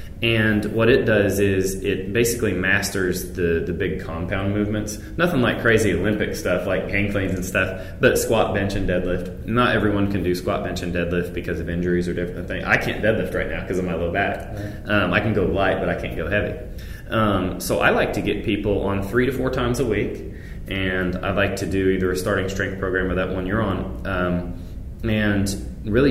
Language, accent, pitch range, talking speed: English, American, 95-110 Hz, 215 wpm